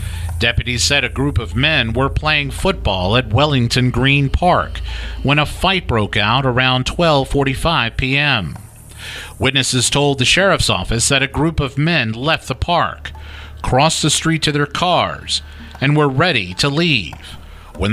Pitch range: 90-145 Hz